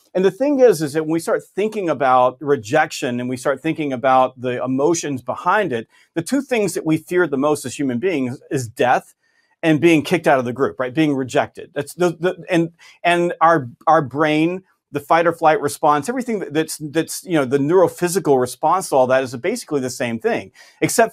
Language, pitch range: English, 145-175 Hz